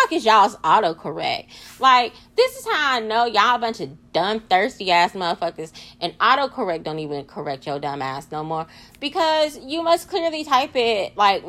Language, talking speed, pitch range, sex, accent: English, 180 wpm, 185-275 Hz, female, American